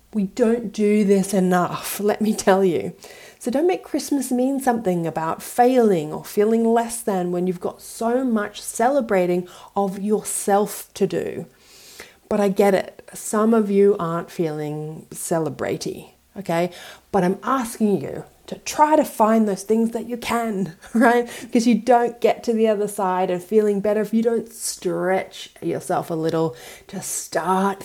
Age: 30-49